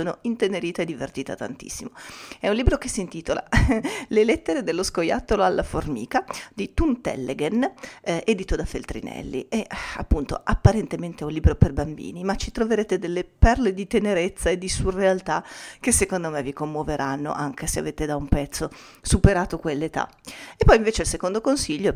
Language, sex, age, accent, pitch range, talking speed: Italian, female, 40-59, native, 150-210 Hz, 160 wpm